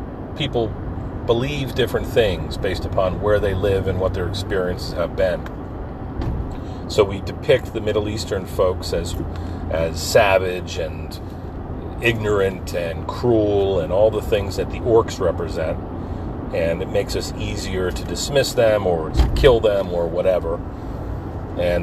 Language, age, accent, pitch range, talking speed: English, 40-59, American, 90-100 Hz, 145 wpm